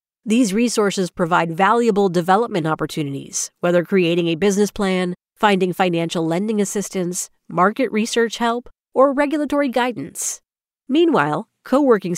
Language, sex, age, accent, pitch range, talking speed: English, female, 40-59, American, 175-240 Hz, 120 wpm